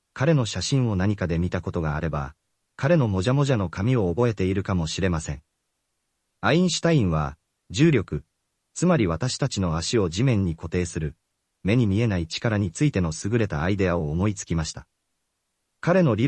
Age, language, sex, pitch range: 40-59, Japanese, male, 85-130 Hz